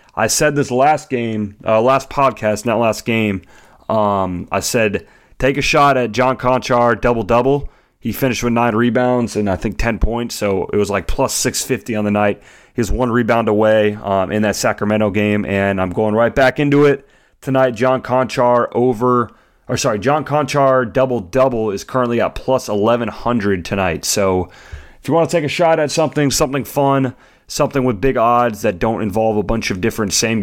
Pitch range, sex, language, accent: 105-130 Hz, male, English, American